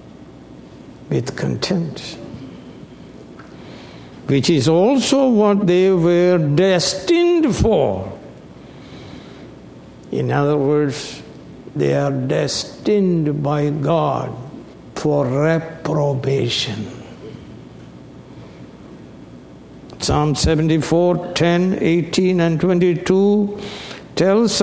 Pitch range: 140-185 Hz